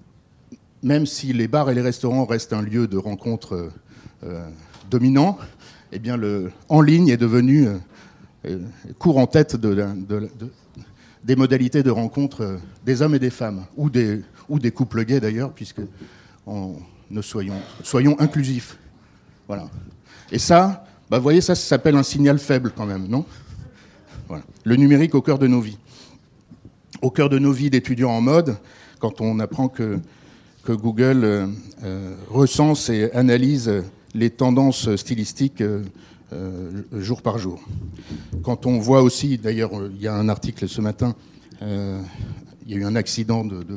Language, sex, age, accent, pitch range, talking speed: French, male, 50-69, French, 105-130 Hz, 160 wpm